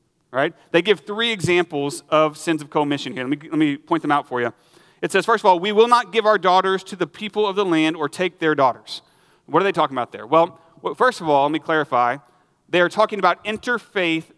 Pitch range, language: 155-200 Hz, English